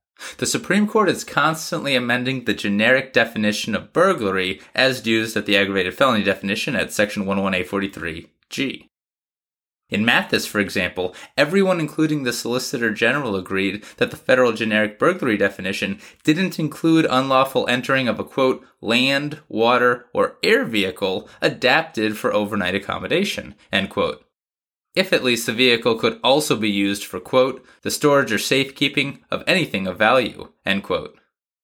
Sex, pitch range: male, 105-150 Hz